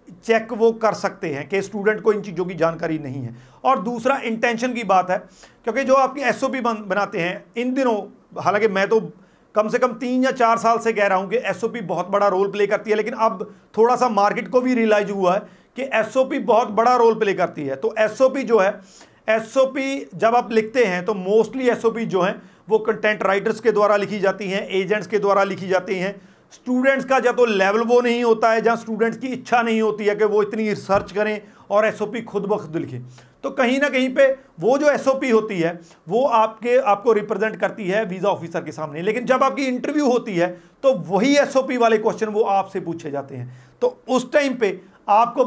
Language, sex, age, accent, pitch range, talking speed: Hindi, male, 40-59, native, 195-245 Hz, 220 wpm